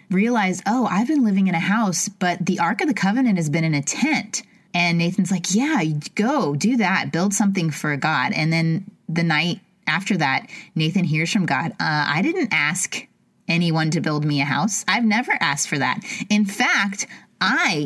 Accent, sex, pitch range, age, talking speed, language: American, female, 165-220 Hz, 30-49, 195 wpm, English